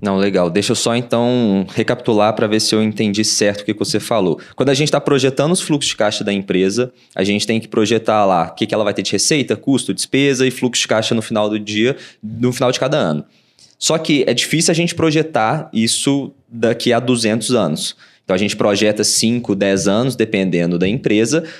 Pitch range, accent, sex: 105-150 Hz, Brazilian, male